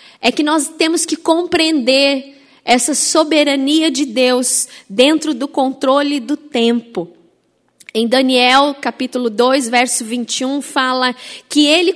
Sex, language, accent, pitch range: female, Portuguese, Brazilian, 270-330 Hz